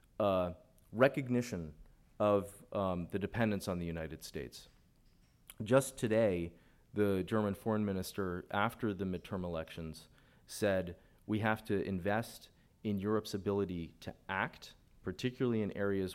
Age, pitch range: 30-49, 90-110 Hz